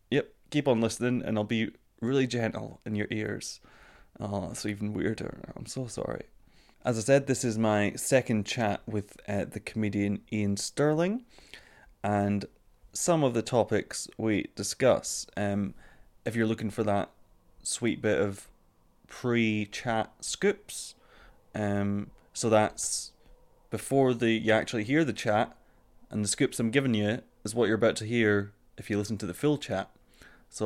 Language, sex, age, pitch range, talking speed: English, male, 20-39, 105-120 Hz, 160 wpm